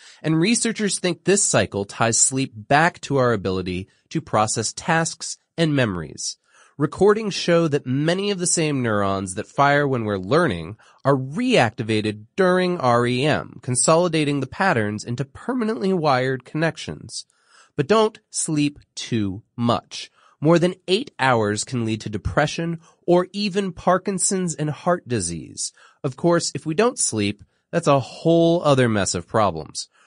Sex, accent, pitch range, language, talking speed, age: male, American, 105-165 Hz, English, 145 wpm, 30-49